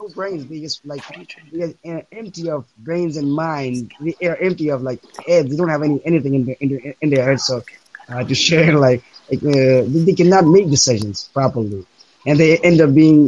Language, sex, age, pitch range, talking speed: English, male, 20-39, 135-160 Hz, 210 wpm